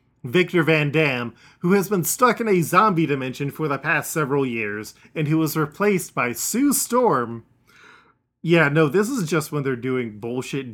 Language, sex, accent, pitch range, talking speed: English, male, American, 125-155 Hz, 180 wpm